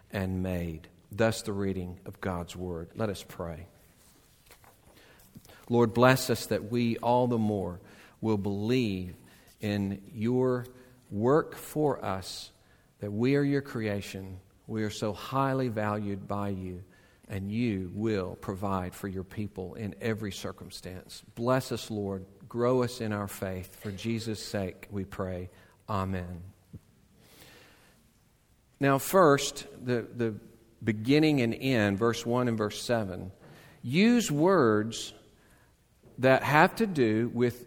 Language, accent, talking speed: English, American, 130 wpm